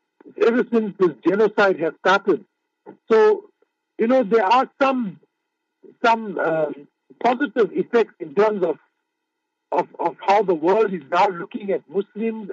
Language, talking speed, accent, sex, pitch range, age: English, 140 wpm, Indian, male, 170-240 Hz, 60-79